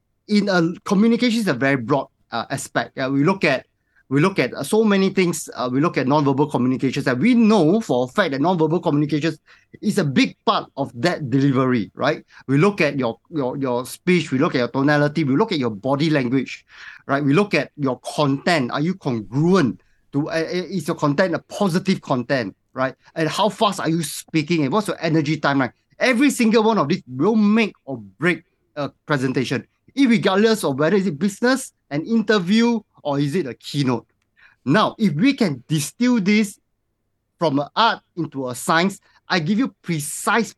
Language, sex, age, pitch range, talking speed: English, male, 30-49, 135-200 Hz, 190 wpm